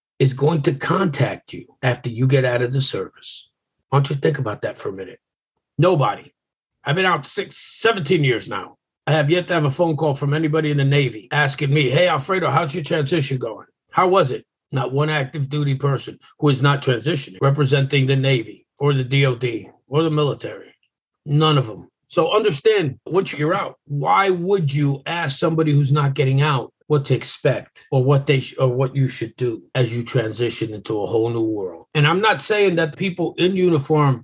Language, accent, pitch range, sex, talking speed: English, American, 130-160 Hz, male, 200 wpm